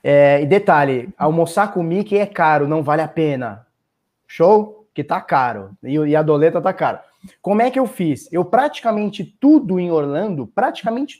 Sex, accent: male, Brazilian